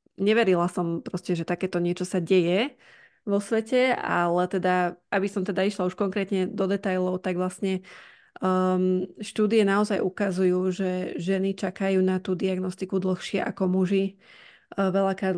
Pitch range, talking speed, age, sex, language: 180-190 Hz, 135 wpm, 20-39, female, Slovak